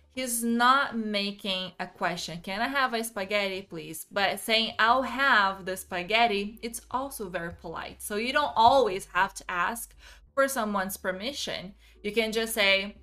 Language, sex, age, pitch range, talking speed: English, female, 20-39, 195-245 Hz, 160 wpm